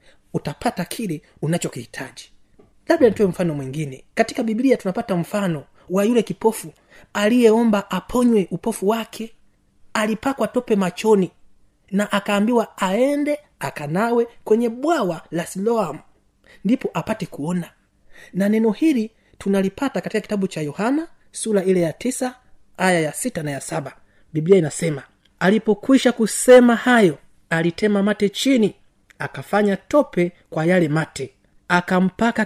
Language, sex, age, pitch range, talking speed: Swahili, male, 30-49, 165-230 Hz, 120 wpm